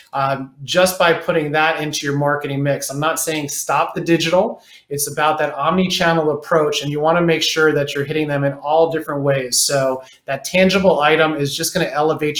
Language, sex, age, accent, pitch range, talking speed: English, male, 30-49, American, 145-170 Hz, 200 wpm